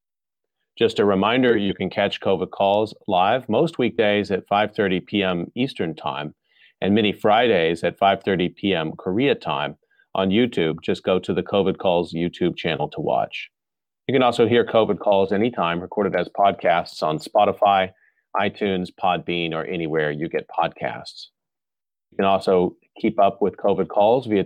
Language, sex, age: English, male, 40-59